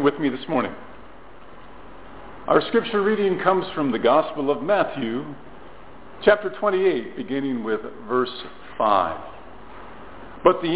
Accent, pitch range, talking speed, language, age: American, 165-225 Hz, 115 wpm, English, 50-69